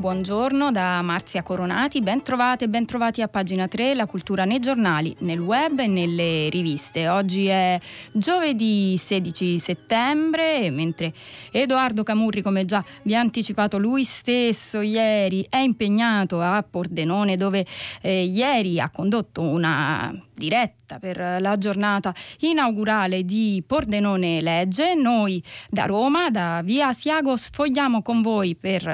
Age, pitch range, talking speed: 30-49, 180-230 Hz, 130 wpm